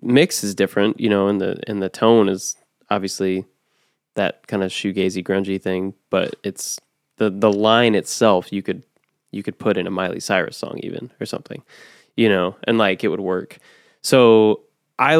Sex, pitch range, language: male, 95-110 Hz, English